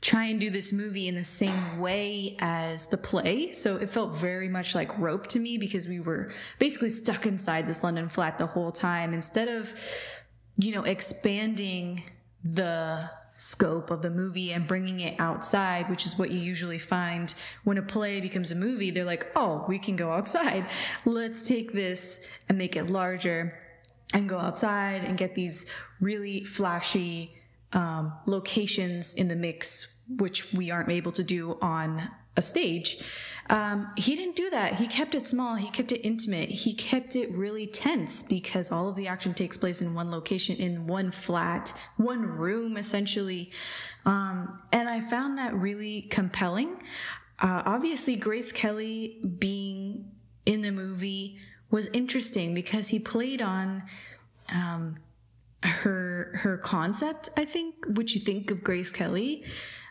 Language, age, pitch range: English, 20-39, 175-220 Hz